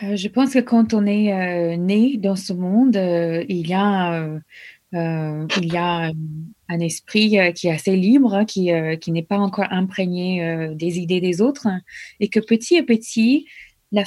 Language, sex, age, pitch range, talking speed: French, female, 20-39, 175-220 Hz, 190 wpm